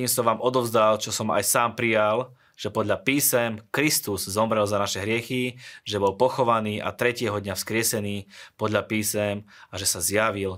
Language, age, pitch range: Slovak, 20-39, 105-120 Hz